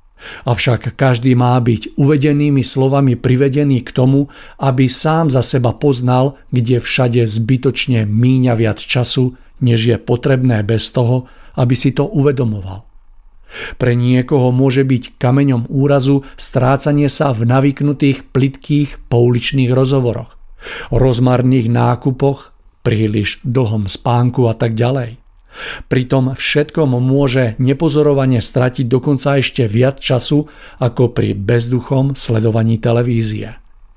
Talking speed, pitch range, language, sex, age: 115 wpm, 115-135 Hz, Czech, male, 50-69